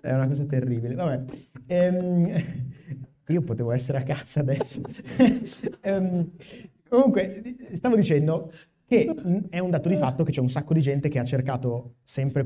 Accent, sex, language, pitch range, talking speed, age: native, male, Italian, 120-150 Hz, 155 wpm, 30-49